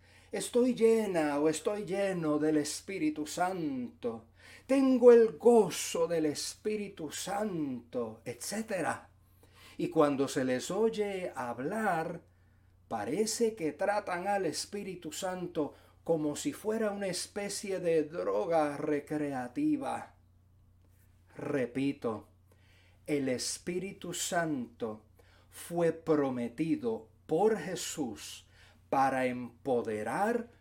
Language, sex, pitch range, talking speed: English, male, 120-200 Hz, 90 wpm